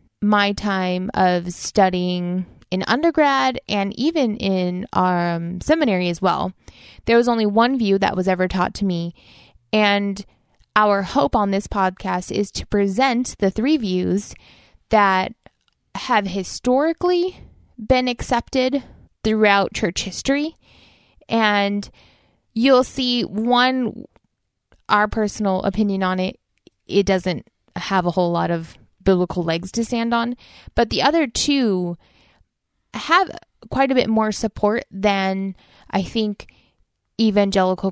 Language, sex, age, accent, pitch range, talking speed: English, female, 20-39, American, 185-230 Hz, 125 wpm